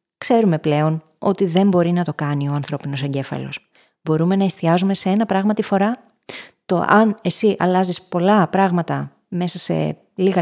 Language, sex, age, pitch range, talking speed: Greek, female, 20-39, 175-220 Hz, 160 wpm